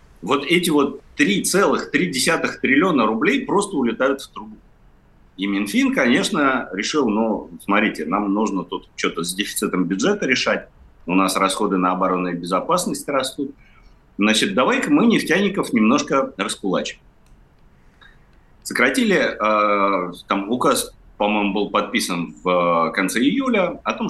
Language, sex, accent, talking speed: Russian, male, native, 125 wpm